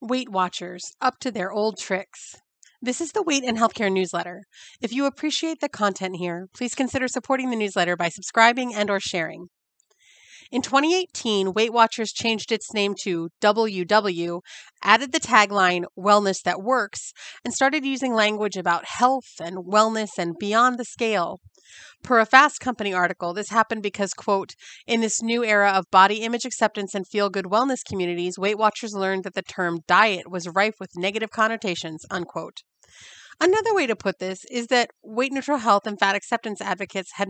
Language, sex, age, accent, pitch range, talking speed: English, female, 30-49, American, 185-245 Hz, 170 wpm